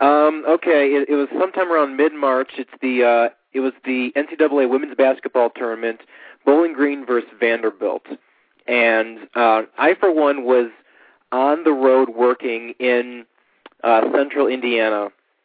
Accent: American